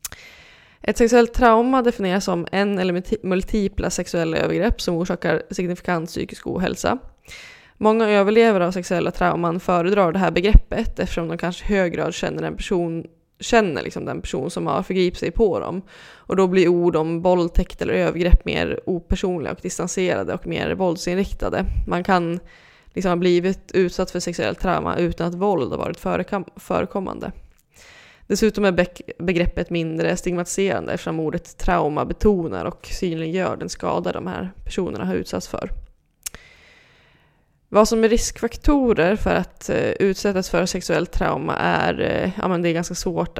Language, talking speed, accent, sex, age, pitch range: English, 150 wpm, Swedish, female, 20-39, 170-195 Hz